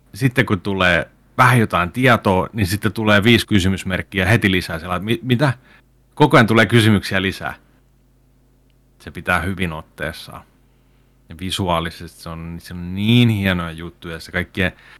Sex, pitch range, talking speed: male, 90-120 Hz, 140 wpm